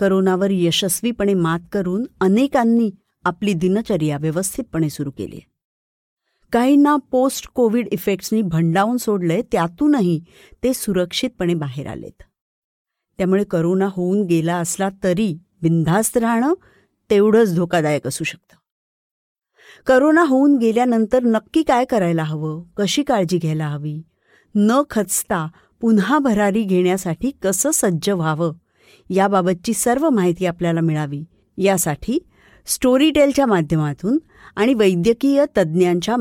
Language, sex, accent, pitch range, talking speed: Marathi, female, native, 170-240 Hz, 105 wpm